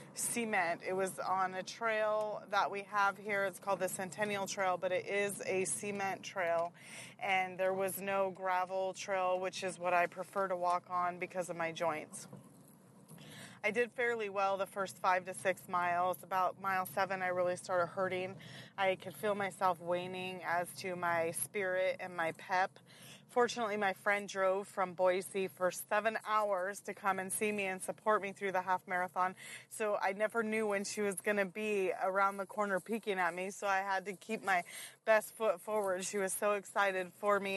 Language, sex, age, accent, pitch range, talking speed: English, female, 30-49, American, 180-205 Hz, 190 wpm